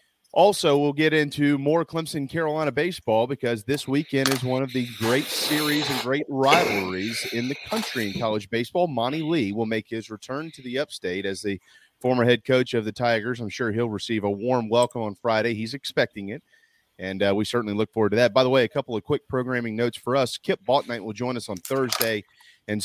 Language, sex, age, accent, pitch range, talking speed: English, male, 30-49, American, 110-140 Hz, 215 wpm